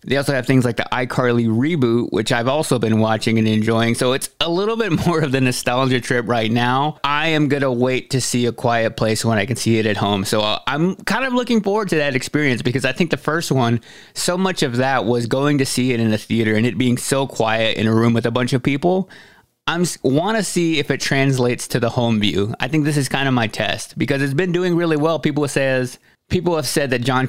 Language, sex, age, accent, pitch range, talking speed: English, male, 30-49, American, 115-145 Hz, 255 wpm